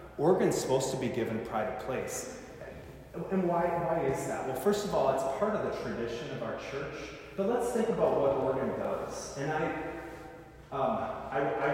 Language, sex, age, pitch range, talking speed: English, male, 30-49, 125-200 Hz, 185 wpm